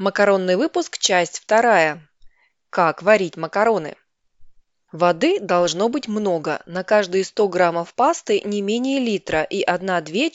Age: 20-39